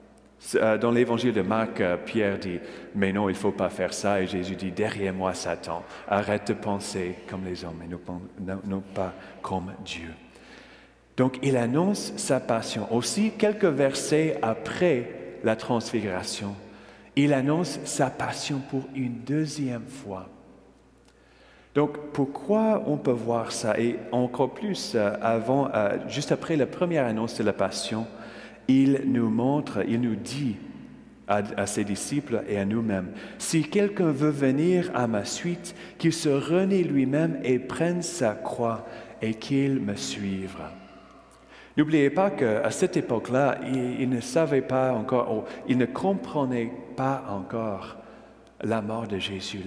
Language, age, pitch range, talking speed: French, 40-59, 100-140 Hz, 150 wpm